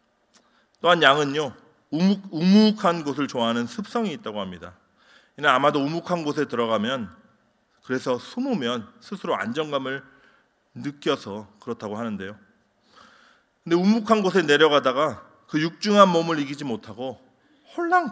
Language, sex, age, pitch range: Korean, male, 30-49, 110-165 Hz